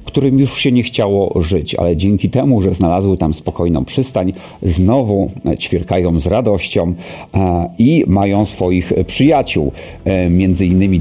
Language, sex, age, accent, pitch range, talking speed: Polish, male, 50-69, native, 85-115 Hz, 130 wpm